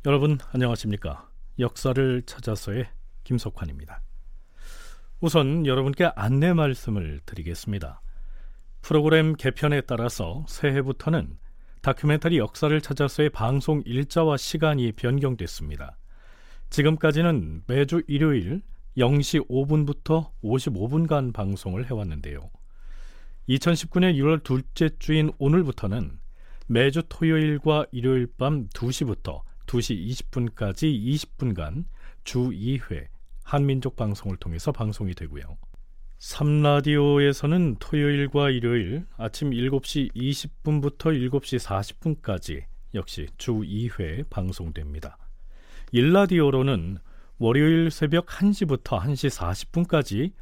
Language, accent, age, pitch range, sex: Korean, native, 40-59, 95-150 Hz, male